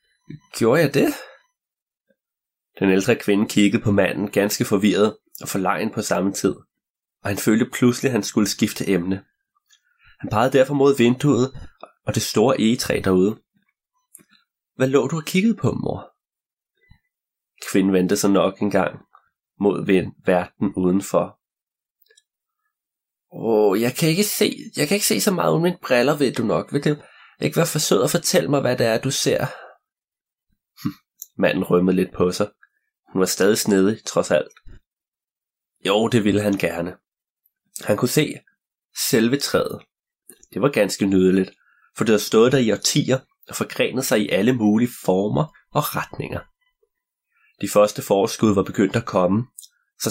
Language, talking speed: Danish, 155 wpm